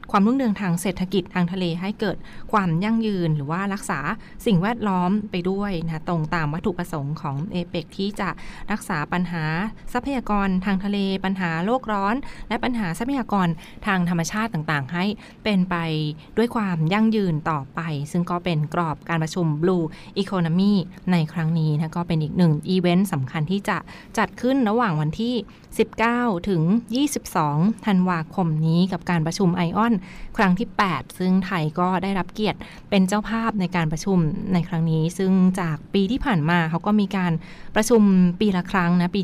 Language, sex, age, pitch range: Thai, female, 20-39, 170-210 Hz